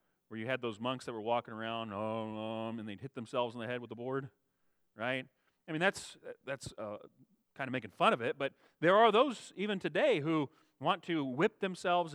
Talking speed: 210 wpm